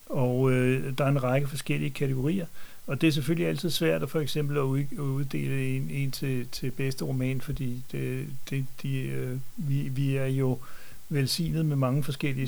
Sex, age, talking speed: male, 60-79, 185 wpm